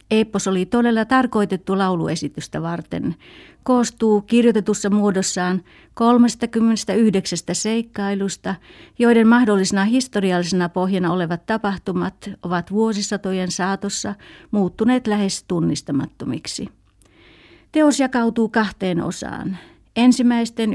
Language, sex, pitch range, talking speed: Finnish, female, 185-225 Hz, 80 wpm